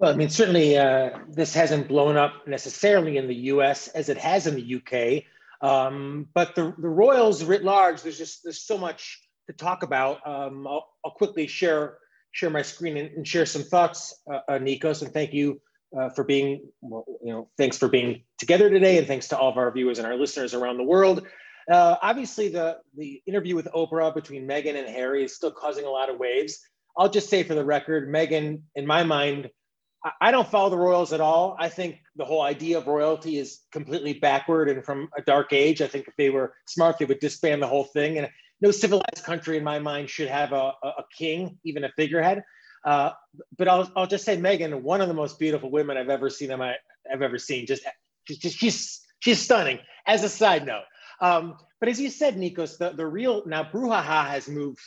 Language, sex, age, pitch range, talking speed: English, male, 30-49, 140-185 Hz, 215 wpm